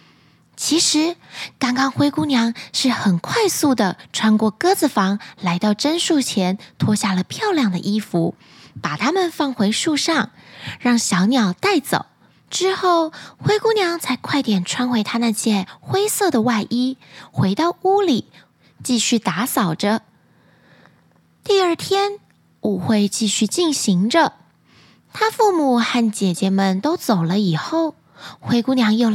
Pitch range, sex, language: 215-315 Hz, female, Chinese